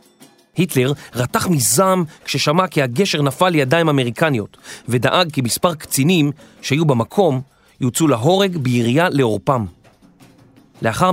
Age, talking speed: 40-59, 110 wpm